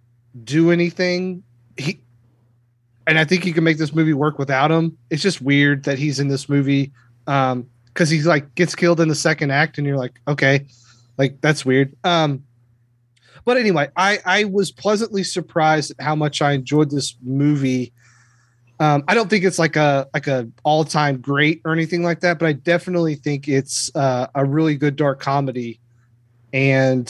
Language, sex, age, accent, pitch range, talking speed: English, male, 30-49, American, 125-160 Hz, 180 wpm